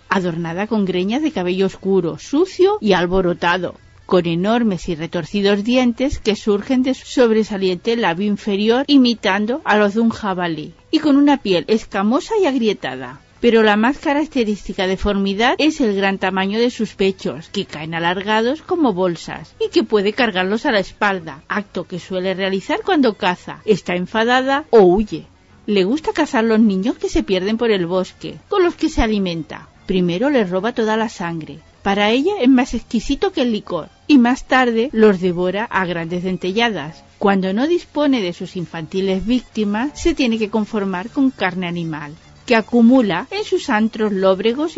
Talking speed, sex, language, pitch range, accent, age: 170 wpm, female, Spanish, 185-245 Hz, Spanish, 40-59